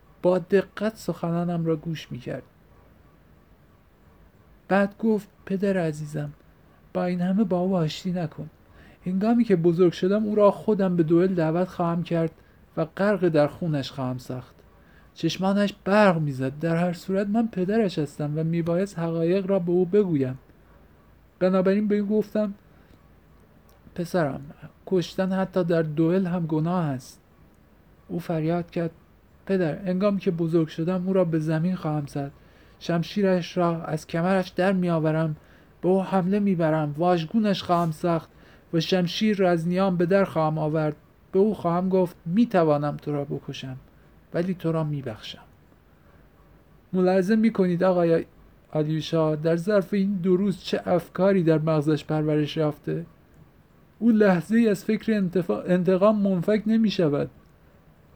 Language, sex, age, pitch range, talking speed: Persian, male, 50-69, 150-190 Hz, 140 wpm